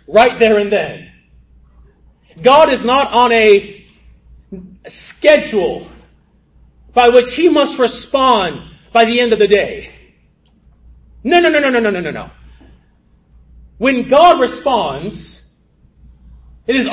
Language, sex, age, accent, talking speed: English, male, 30-49, American, 120 wpm